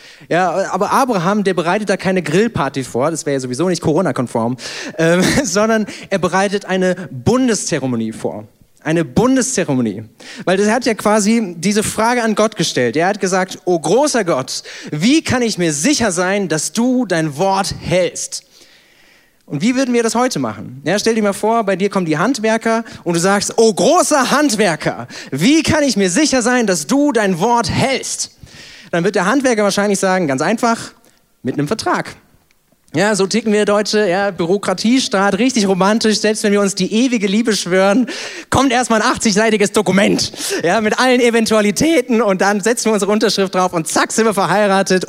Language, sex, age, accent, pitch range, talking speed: German, male, 30-49, German, 170-225 Hz, 180 wpm